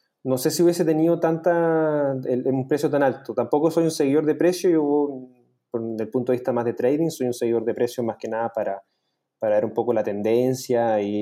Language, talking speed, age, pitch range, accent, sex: Spanish, 220 wpm, 20-39, 115-150 Hz, Argentinian, male